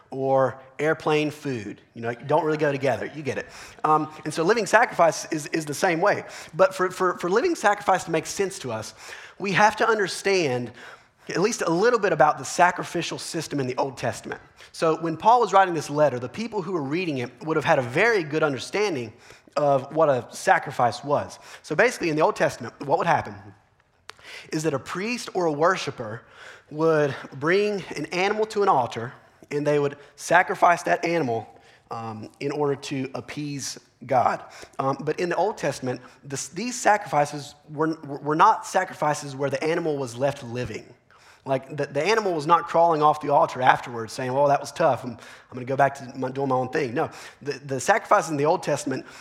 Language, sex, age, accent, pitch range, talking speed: English, male, 30-49, American, 135-175 Hz, 200 wpm